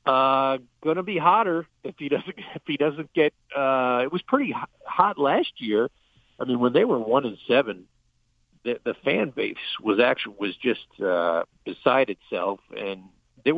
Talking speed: 170 wpm